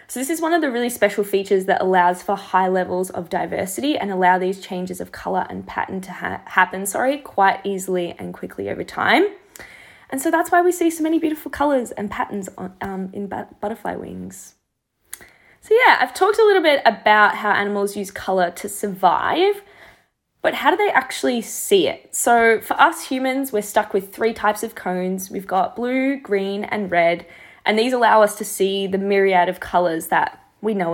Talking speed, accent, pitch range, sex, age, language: 195 wpm, Australian, 185-255 Hz, female, 20-39, English